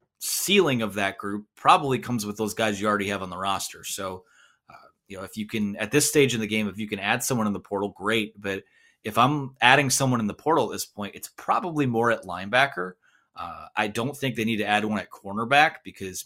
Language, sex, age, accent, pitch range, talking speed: English, male, 30-49, American, 100-135 Hz, 240 wpm